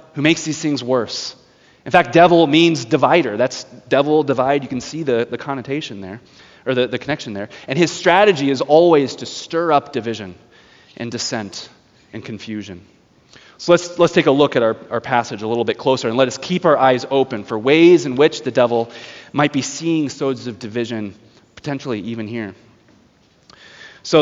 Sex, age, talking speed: male, 20-39, 185 wpm